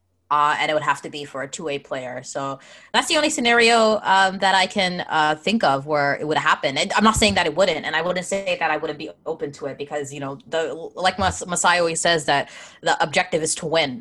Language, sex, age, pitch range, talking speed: English, female, 20-39, 145-195 Hz, 255 wpm